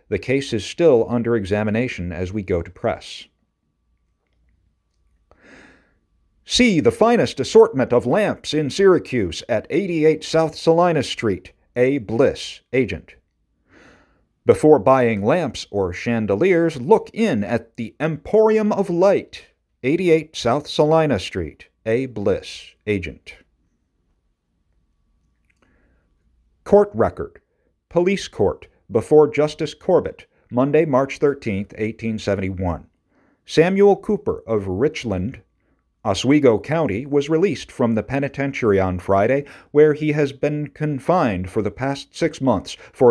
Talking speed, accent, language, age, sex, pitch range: 115 wpm, American, English, 50-69, male, 95-155 Hz